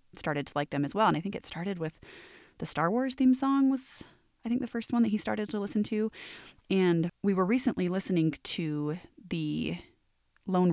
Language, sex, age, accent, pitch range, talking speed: English, female, 20-39, American, 165-230 Hz, 205 wpm